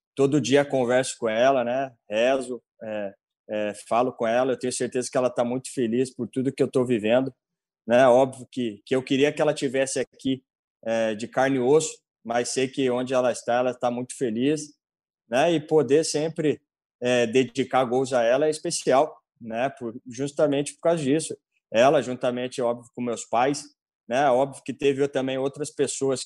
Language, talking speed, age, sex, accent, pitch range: Portuguese, 185 wpm, 20-39, male, Brazilian, 120-135 Hz